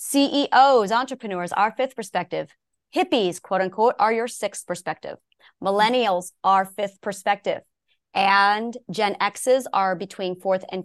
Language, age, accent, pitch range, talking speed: English, 30-49, American, 195-250 Hz, 125 wpm